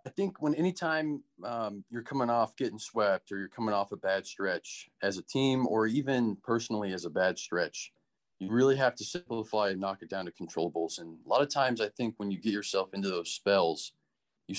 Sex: male